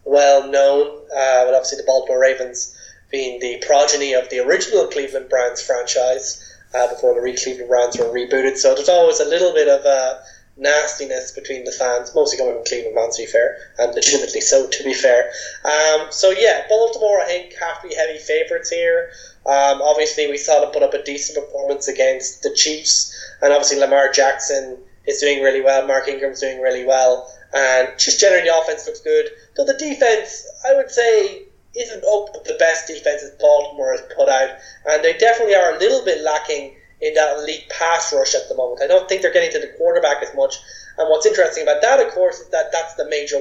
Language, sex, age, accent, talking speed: English, male, 10-29, Irish, 200 wpm